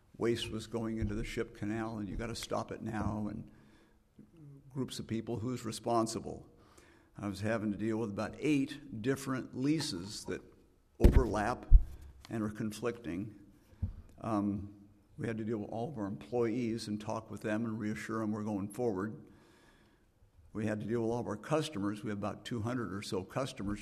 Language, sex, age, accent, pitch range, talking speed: English, male, 60-79, American, 105-120 Hz, 180 wpm